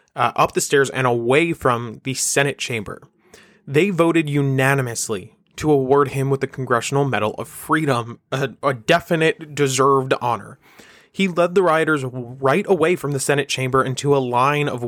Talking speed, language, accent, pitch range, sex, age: 165 wpm, English, American, 130-165 Hz, male, 20-39